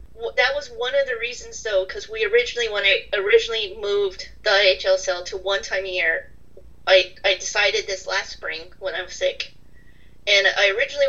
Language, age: English, 30-49